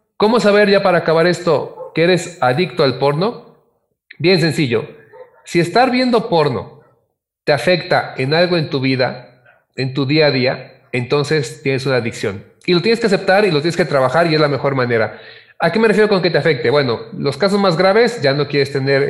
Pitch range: 140-200 Hz